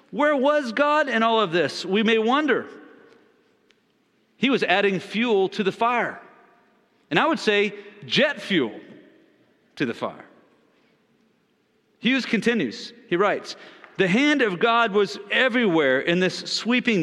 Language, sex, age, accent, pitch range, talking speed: English, male, 40-59, American, 185-245 Hz, 135 wpm